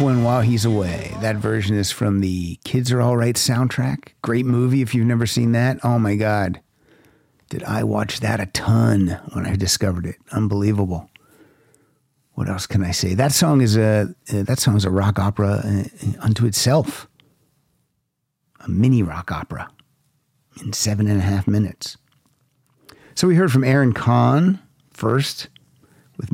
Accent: American